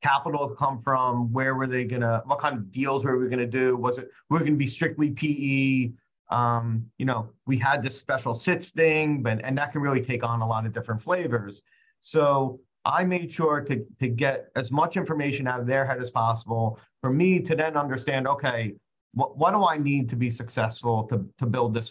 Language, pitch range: English, 115-140 Hz